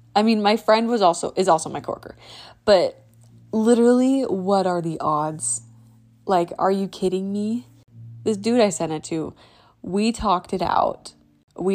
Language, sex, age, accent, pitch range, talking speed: English, female, 20-39, American, 150-205 Hz, 165 wpm